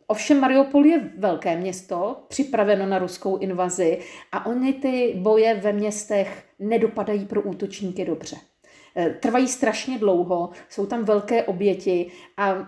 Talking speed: 130 wpm